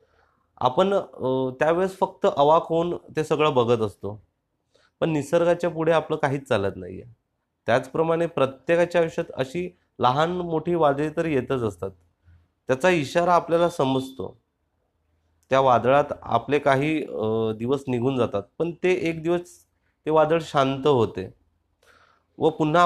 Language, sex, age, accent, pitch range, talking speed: Marathi, male, 30-49, native, 115-160 Hz, 130 wpm